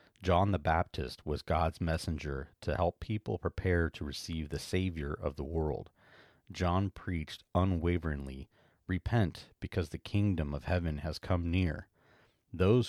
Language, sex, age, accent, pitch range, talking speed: English, male, 40-59, American, 80-95 Hz, 140 wpm